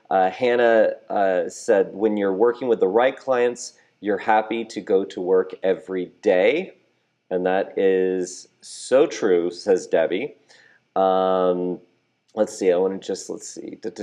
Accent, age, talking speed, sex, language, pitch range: American, 40-59, 150 wpm, male, English, 95-130 Hz